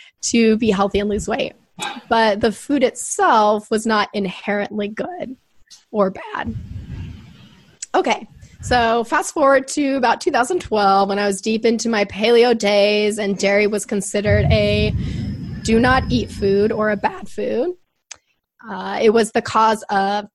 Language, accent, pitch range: English, American, 205-240 Hz